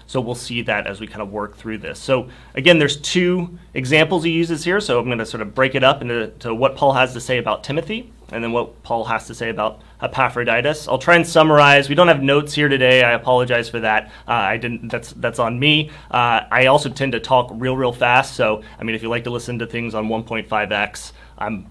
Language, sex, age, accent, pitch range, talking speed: English, male, 30-49, American, 105-135 Hz, 245 wpm